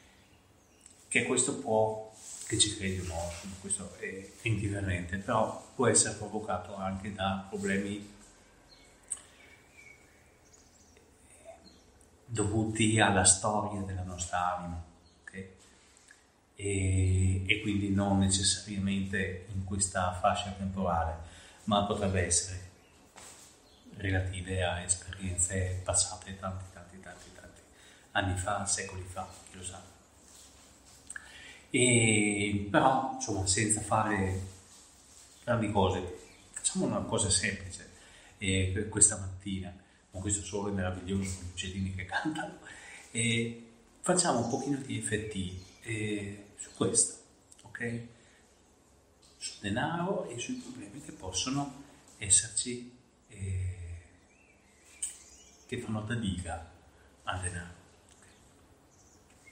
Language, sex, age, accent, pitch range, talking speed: Italian, male, 30-49, native, 90-105 Hz, 100 wpm